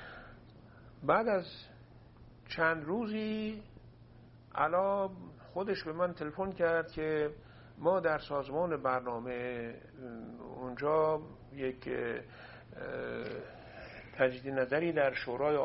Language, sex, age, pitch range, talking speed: English, male, 50-69, 125-170 Hz, 80 wpm